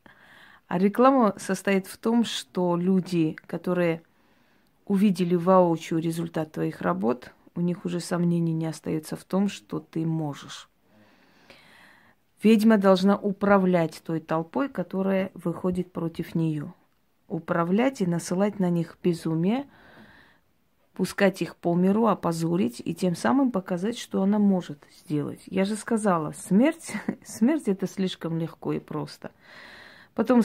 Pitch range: 165-200 Hz